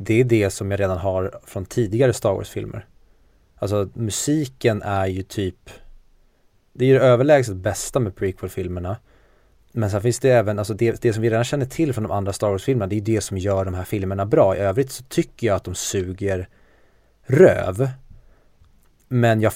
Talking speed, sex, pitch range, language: 185 wpm, male, 95-120 Hz, Swedish